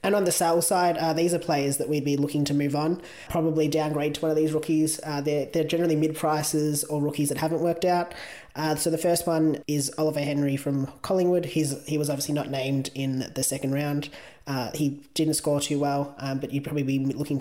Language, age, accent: English, 20-39, Australian